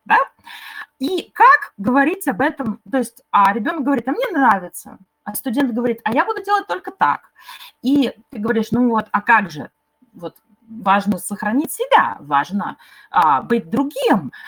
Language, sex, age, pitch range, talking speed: Russian, female, 20-39, 220-295 Hz, 160 wpm